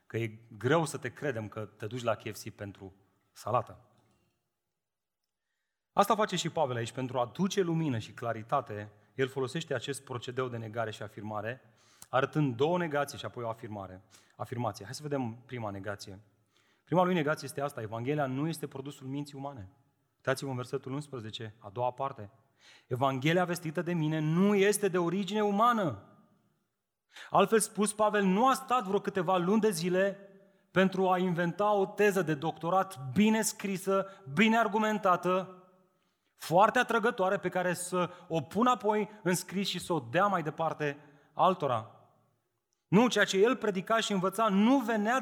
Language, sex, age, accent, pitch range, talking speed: Romanian, male, 30-49, native, 125-200 Hz, 160 wpm